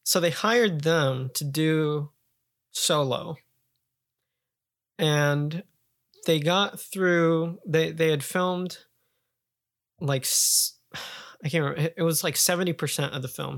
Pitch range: 125-155 Hz